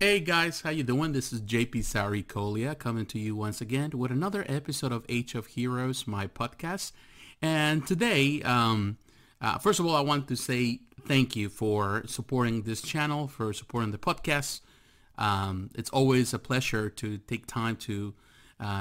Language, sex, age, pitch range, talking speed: English, male, 40-59, 110-130 Hz, 175 wpm